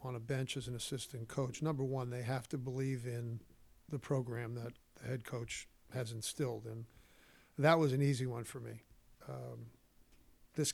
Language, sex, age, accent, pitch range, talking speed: English, male, 50-69, American, 125-150 Hz, 180 wpm